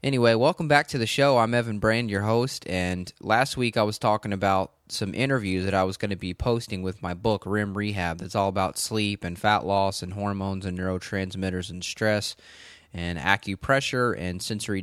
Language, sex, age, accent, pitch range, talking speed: English, male, 20-39, American, 95-110 Hz, 200 wpm